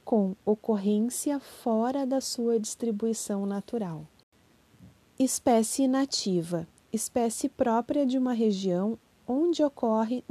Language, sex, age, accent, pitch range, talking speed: Portuguese, female, 30-49, Brazilian, 205-255 Hz, 95 wpm